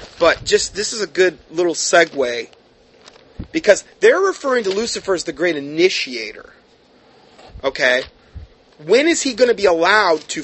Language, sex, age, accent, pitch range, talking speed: English, male, 30-49, American, 160-245 Hz, 150 wpm